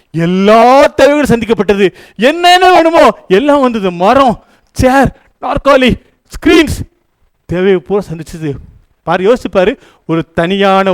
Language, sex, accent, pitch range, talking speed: Tamil, male, native, 175-250 Hz, 95 wpm